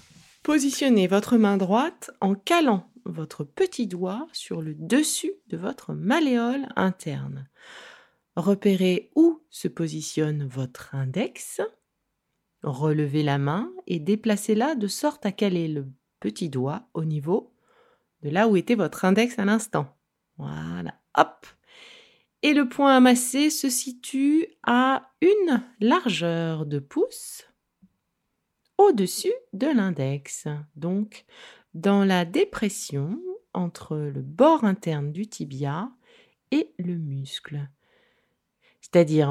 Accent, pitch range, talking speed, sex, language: French, 155-250 Hz, 115 wpm, female, French